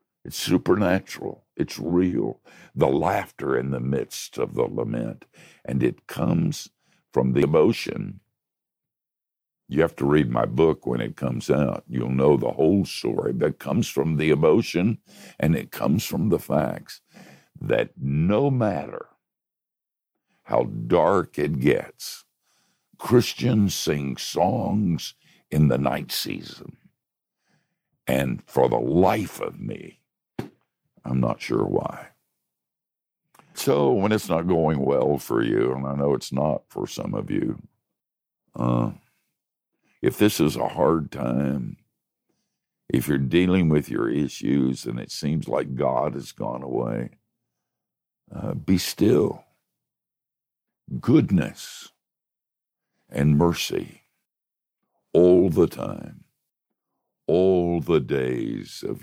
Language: English